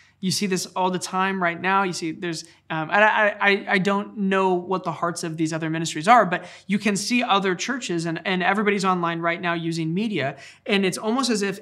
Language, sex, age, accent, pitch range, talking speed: English, male, 20-39, American, 160-195 Hz, 230 wpm